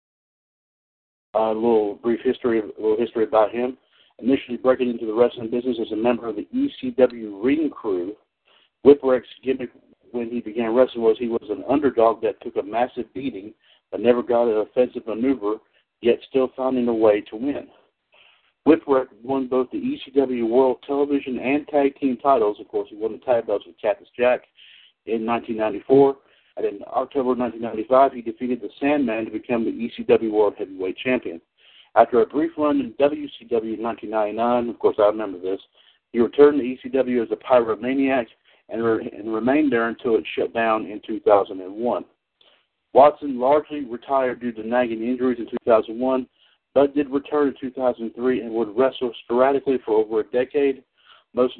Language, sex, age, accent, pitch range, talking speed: English, male, 60-79, American, 115-140 Hz, 165 wpm